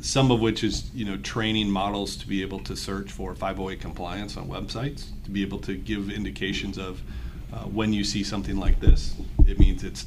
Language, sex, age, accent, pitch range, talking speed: English, male, 40-59, American, 95-110 Hz, 210 wpm